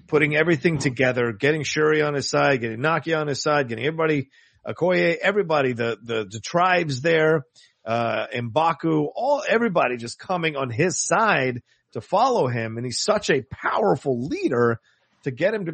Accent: American